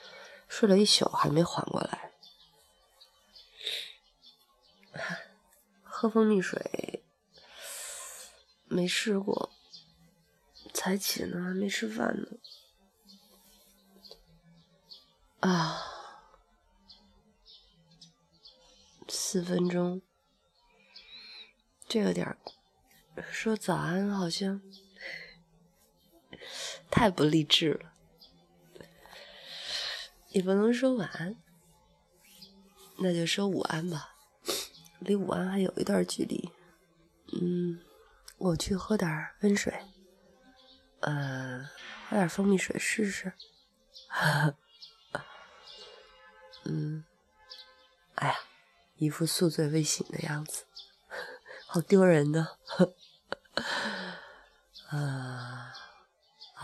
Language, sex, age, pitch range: Chinese, female, 30-49, 165-195 Hz